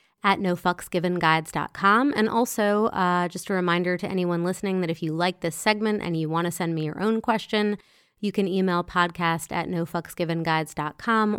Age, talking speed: 30-49, 170 wpm